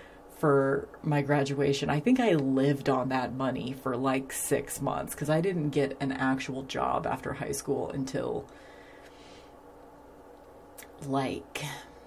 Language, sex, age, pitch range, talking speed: English, female, 30-49, 135-155 Hz, 130 wpm